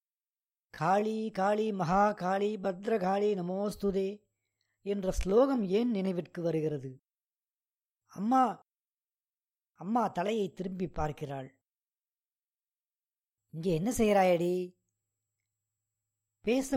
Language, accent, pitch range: Tamil, native, 150-215 Hz